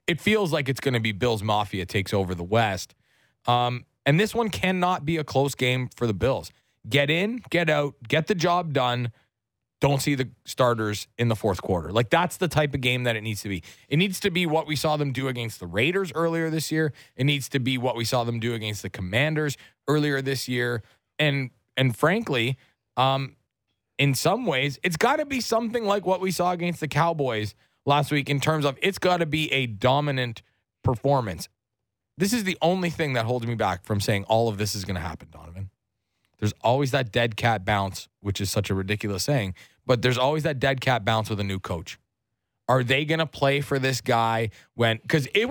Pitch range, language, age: 110-150 Hz, English, 20-39